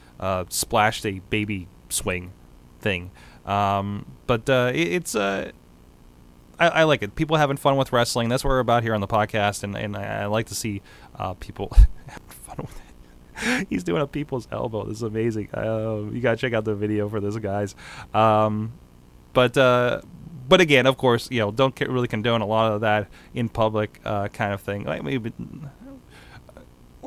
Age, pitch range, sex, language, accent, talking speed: 20-39, 100-125 Hz, male, English, American, 190 wpm